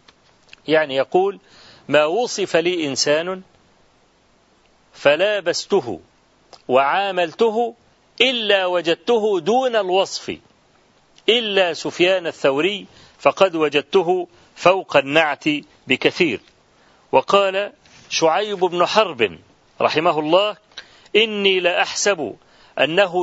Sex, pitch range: male, 150-195 Hz